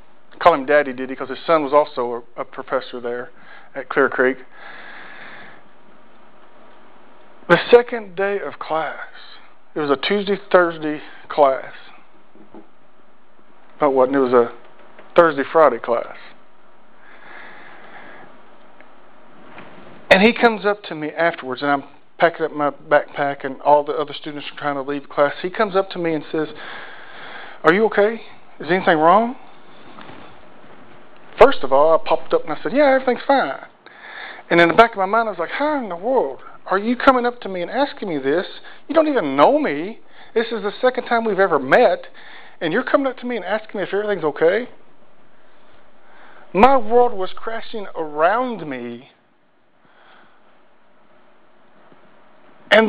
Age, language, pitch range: 40-59, English, 150-235 Hz